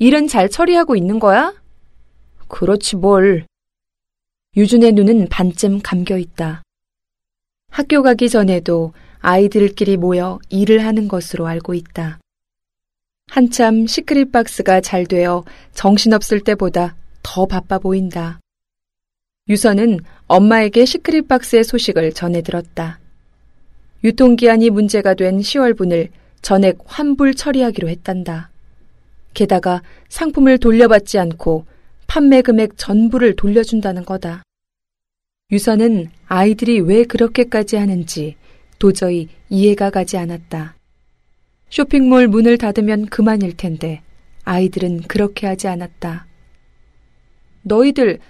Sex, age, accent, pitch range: female, 20-39, native, 175-230 Hz